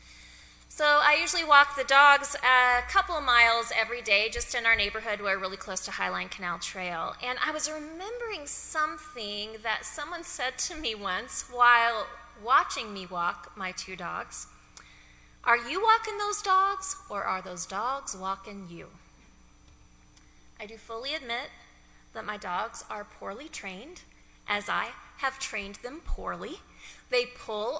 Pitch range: 190-285 Hz